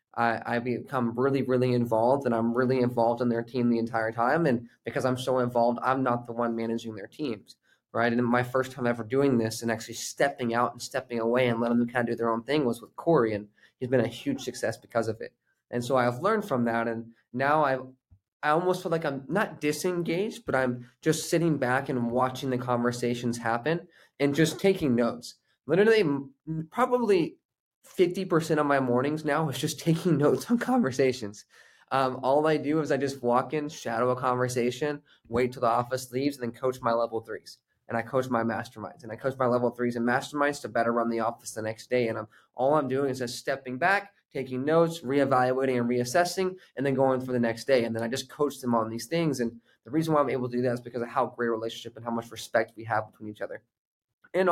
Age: 20-39